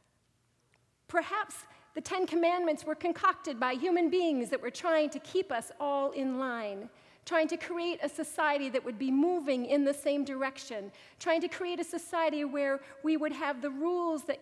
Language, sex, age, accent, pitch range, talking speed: English, female, 40-59, American, 255-310 Hz, 180 wpm